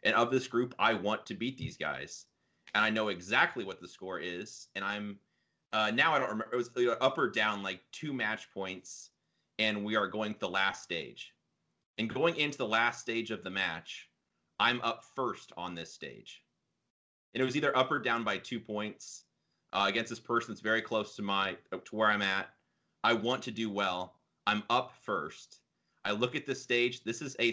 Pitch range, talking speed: 105-130 Hz, 205 wpm